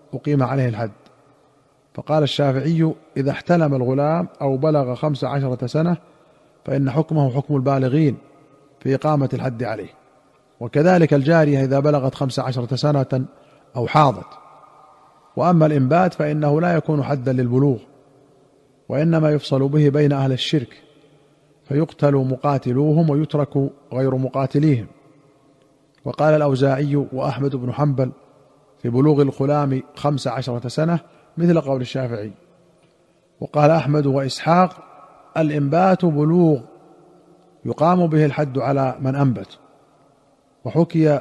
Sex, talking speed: male, 110 wpm